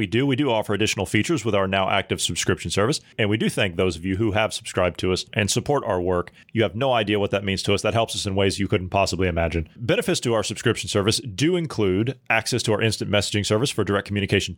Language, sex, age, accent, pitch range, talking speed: English, male, 30-49, American, 100-130 Hz, 260 wpm